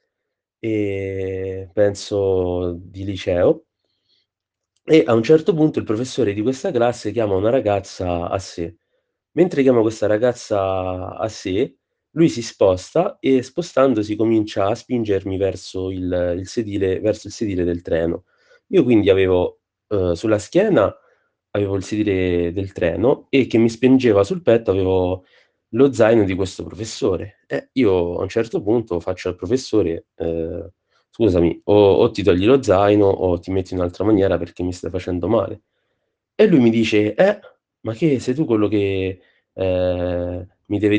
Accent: native